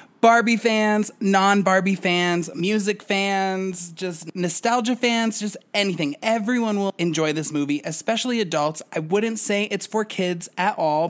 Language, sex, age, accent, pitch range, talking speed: English, male, 20-39, American, 150-195 Hz, 140 wpm